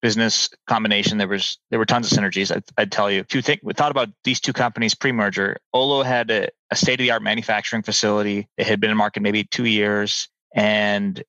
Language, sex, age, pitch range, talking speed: English, male, 20-39, 105-120 Hz, 205 wpm